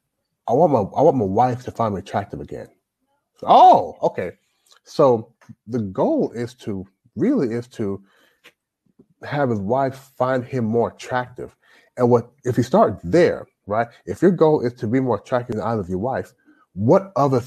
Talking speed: 180 wpm